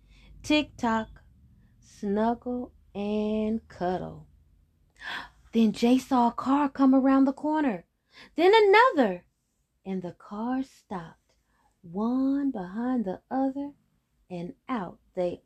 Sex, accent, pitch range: female, American, 185-270 Hz